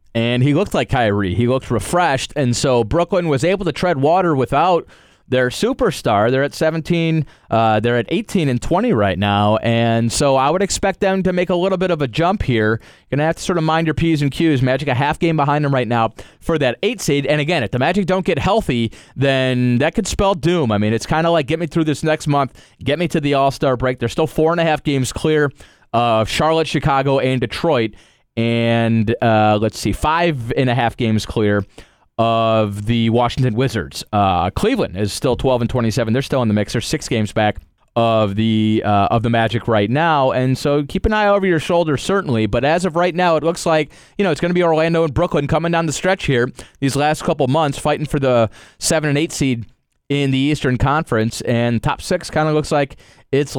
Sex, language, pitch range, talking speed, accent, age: male, English, 115-160 Hz, 230 wpm, American, 30-49